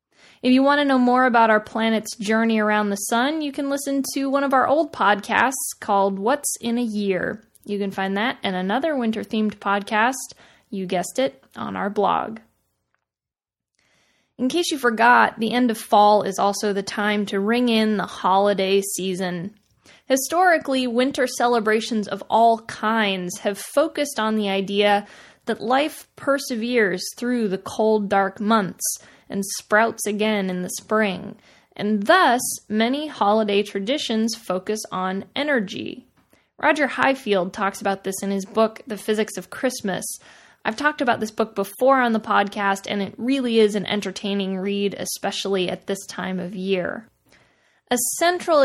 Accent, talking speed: American, 160 wpm